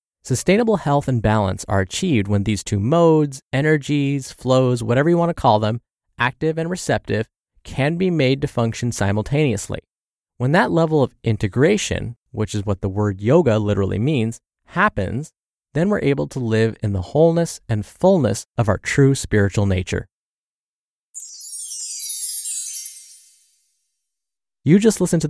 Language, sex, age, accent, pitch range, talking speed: English, male, 20-39, American, 110-150 Hz, 140 wpm